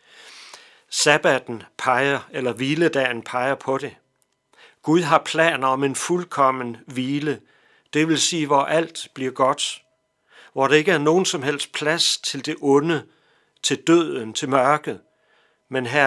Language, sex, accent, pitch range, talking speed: Danish, male, native, 125-155 Hz, 140 wpm